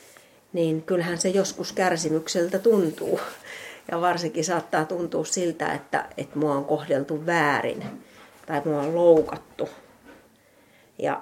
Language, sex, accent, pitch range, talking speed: Finnish, female, native, 155-210 Hz, 120 wpm